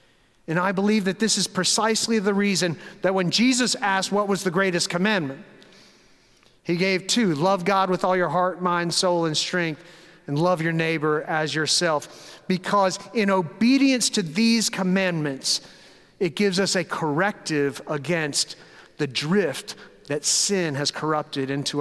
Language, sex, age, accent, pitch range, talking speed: English, male, 40-59, American, 165-225 Hz, 155 wpm